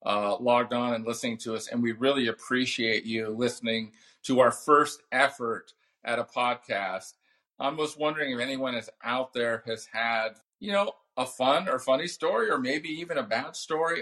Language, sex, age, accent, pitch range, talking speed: English, male, 40-59, American, 115-135 Hz, 185 wpm